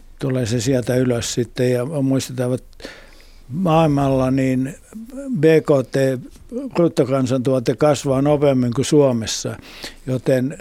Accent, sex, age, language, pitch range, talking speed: native, male, 60-79, Finnish, 125-145 Hz, 95 wpm